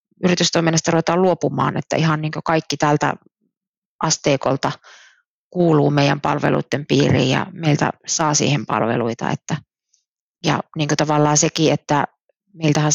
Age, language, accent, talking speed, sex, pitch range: 30-49, Finnish, native, 115 wpm, female, 140-165 Hz